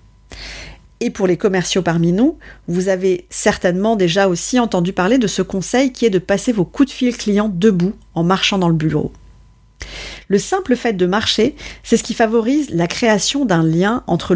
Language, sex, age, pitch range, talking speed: French, female, 40-59, 175-230 Hz, 190 wpm